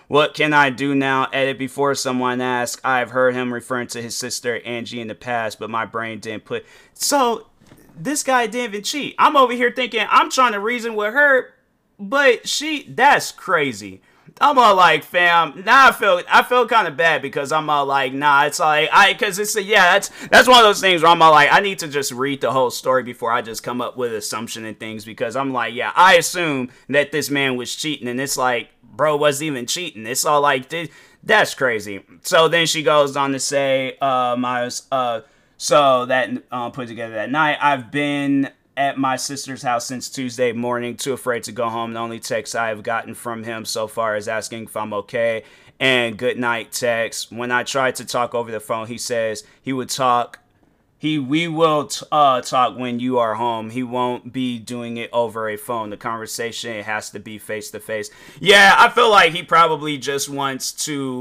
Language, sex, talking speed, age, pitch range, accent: English, male, 215 wpm, 30-49, 120-155 Hz, American